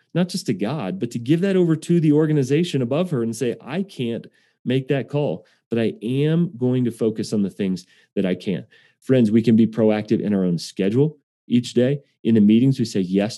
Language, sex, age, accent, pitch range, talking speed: English, male, 30-49, American, 110-140 Hz, 225 wpm